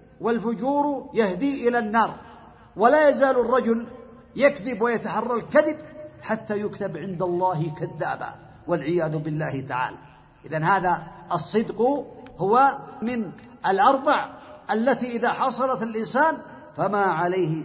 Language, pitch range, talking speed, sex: Arabic, 170-245 Hz, 100 wpm, male